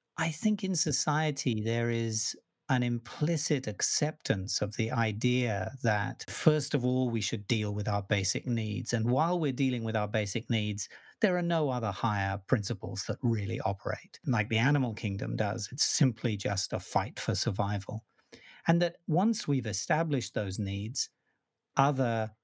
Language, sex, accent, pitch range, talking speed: English, male, British, 105-135 Hz, 160 wpm